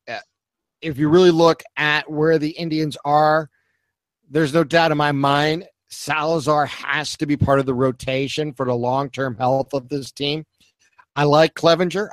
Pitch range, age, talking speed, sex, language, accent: 130-155 Hz, 50-69, 165 wpm, male, English, American